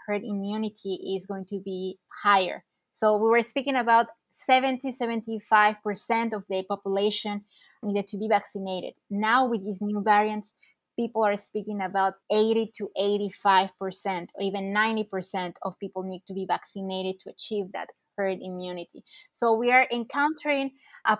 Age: 20-39